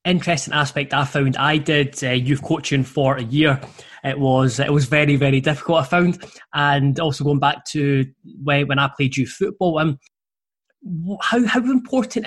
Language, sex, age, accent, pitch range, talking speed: English, male, 20-39, British, 140-170 Hz, 170 wpm